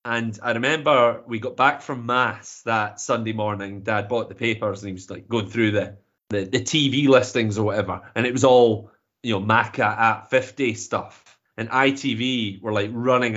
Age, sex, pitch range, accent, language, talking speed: 30-49, male, 105-130 Hz, British, English, 195 wpm